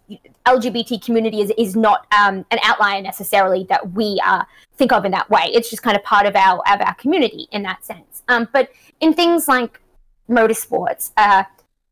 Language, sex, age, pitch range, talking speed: English, female, 20-39, 210-270 Hz, 185 wpm